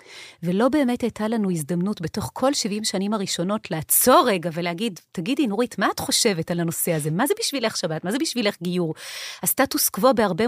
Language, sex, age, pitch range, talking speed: Hebrew, female, 30-49, 175-240 Hz, 185 wpm